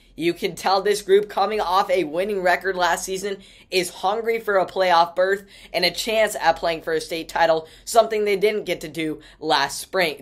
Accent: American